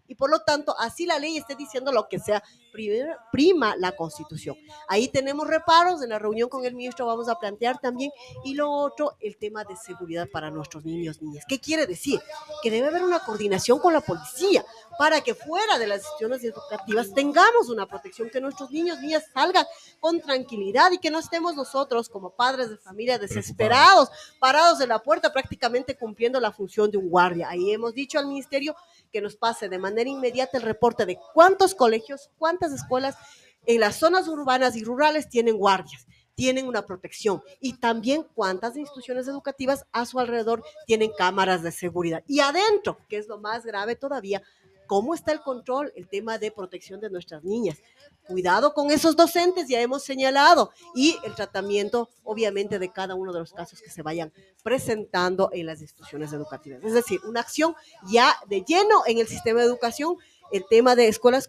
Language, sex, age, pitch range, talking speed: Spanish, female, 40-59, 205-300 Hz, 185 wpm